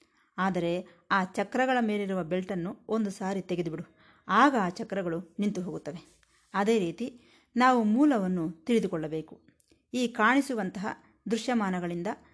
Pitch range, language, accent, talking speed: 180-245 Hz, Kannada, native, 100 wpm